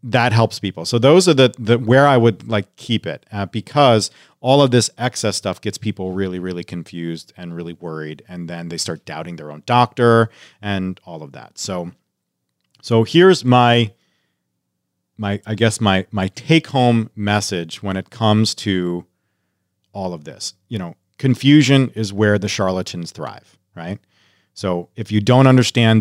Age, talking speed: 40-59, 170 wpm